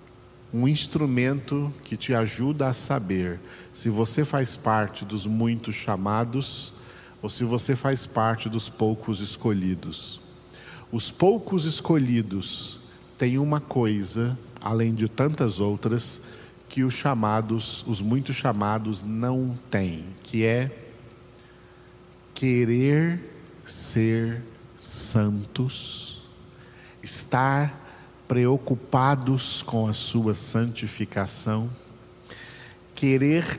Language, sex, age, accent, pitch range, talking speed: Portuguese, male, 50-69, Brazilian, 110-140 Hz, 95 wpm